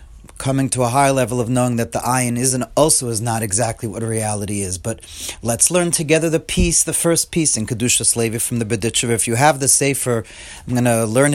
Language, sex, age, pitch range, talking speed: English, male, 30-49, 125-165 Hz, 215 wpm